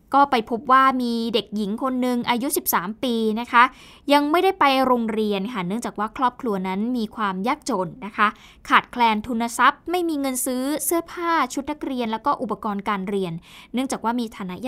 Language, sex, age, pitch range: Thai, female, 20-39, 210-265 Hz